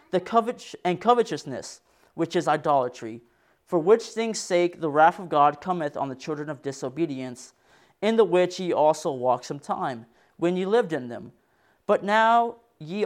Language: English